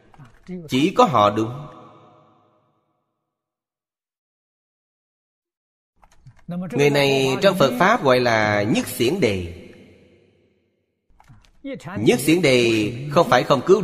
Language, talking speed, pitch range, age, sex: Vietnamese, 90 wpm, 110-145 Hz, 30-49, male